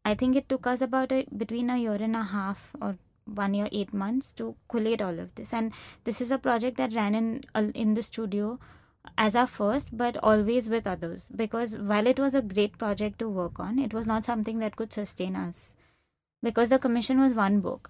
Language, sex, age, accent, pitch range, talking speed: English, female, 20-39, Indian, 195-235 Hz, 220 wpm